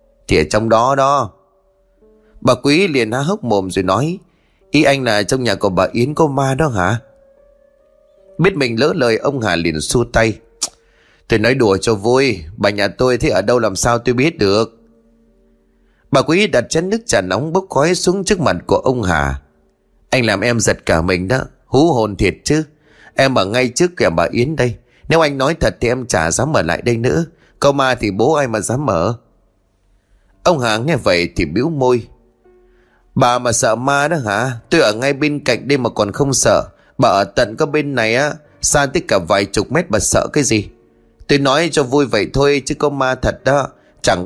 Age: 20-39